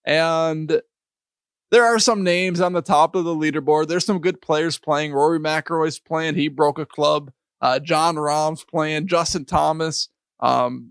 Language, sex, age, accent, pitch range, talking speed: English, male, 20-39, American, 150-185 Hz, 165 wpm